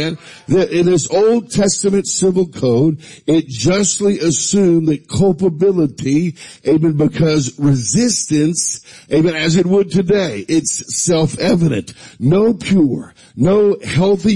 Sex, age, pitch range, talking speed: male, 50-69, 150-190 Hz, 110 wpm